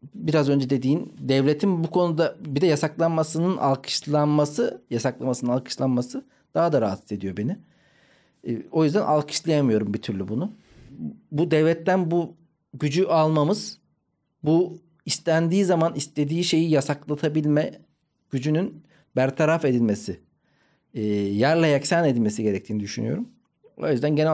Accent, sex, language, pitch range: native, male, Turkish, 125-160 Hz